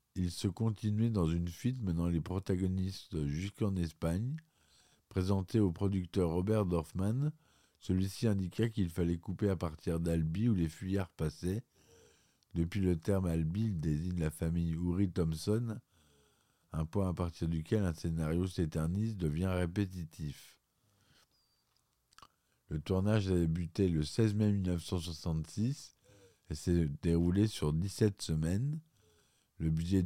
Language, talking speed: French, 125 wpm